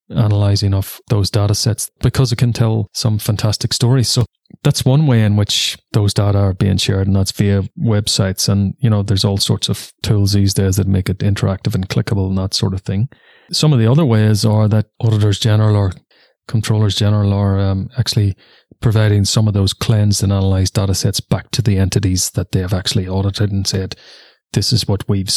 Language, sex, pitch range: English, male, 100-115 Hz